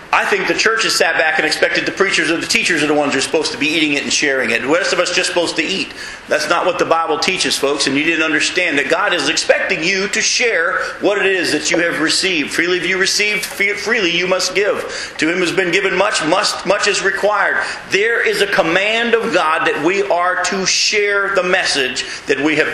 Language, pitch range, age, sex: English, 170-215 Hz, 40-59, male